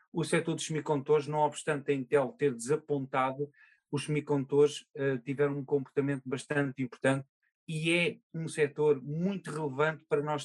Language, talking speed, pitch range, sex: Portuguese, 150 wpm, 135-155 Hz, male